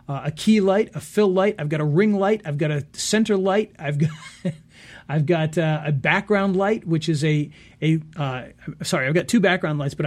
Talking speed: 220 wpm